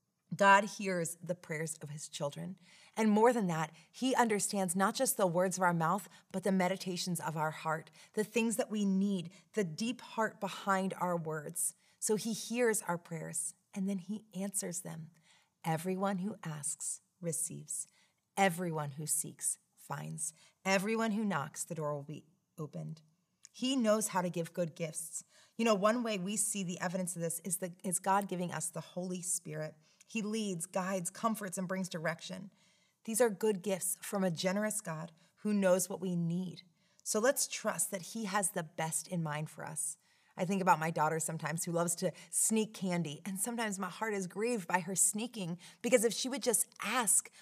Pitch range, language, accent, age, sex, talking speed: 170-215 Hz, English, American, 30-49, female, 185 wpm